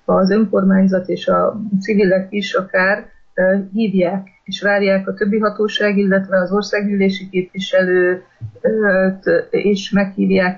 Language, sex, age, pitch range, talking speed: Hungarian, female, 30-49, 185-210 Hz, 115 wpm